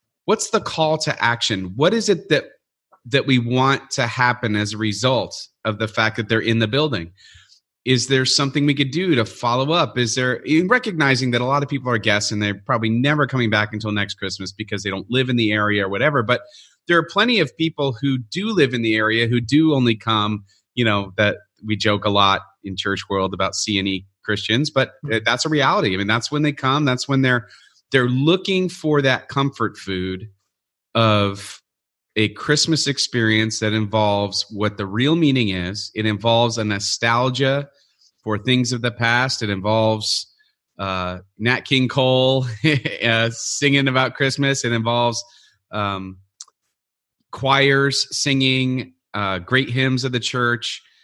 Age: 30-49